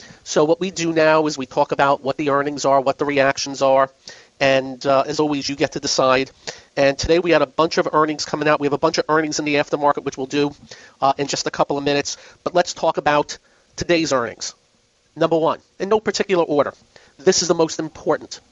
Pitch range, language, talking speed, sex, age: 140-175 Hz, English, 230 wpm, male, 40-59